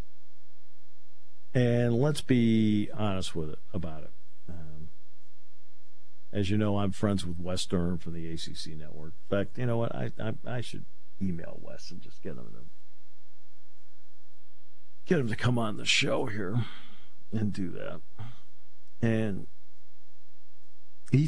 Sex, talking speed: male, 135 wpm